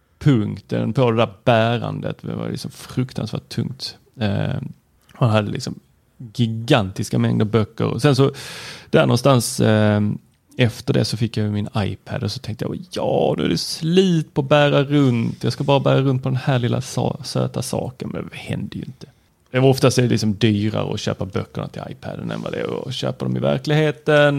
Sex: male